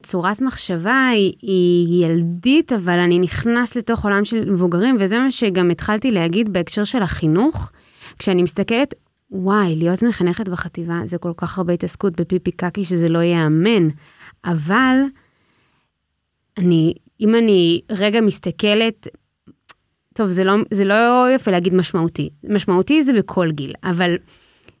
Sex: female